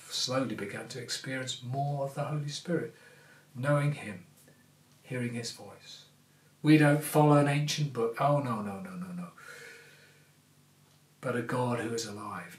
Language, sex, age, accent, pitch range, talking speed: English, male, 40-59, British, 120-155 Hz, 155 wpm